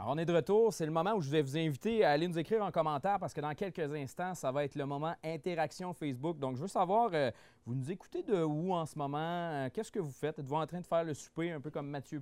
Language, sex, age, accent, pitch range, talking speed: French, male, 30-49, Canadian, 135-175 Hz, 290 wpm